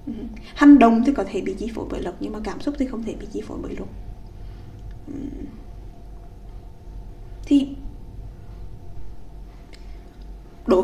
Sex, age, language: female, 20-39, Vietnamese